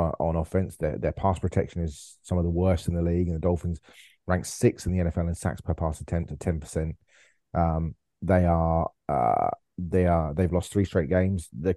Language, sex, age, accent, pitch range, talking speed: English, male, 30-49, British, 85-95 Hz, 215 wpm